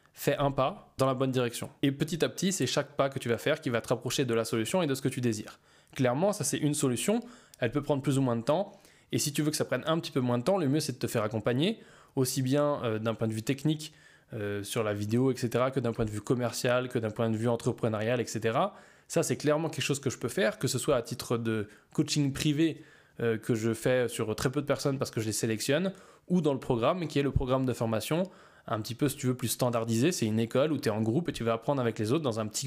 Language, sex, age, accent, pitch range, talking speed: French, male, 20-39, French, 115-150 Hz, 290 wpm